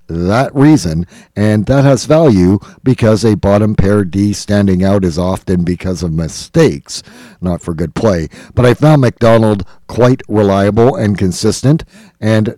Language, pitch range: English, 90-110 Hz